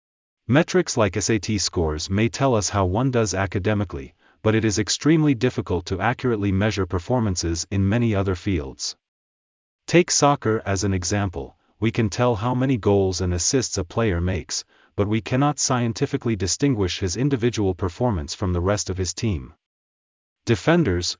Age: 40-59